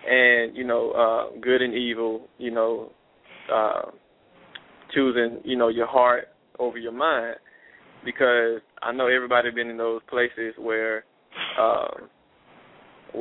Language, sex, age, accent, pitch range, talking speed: English, male, 20-39, American, 115-125 Hz, 125 wpm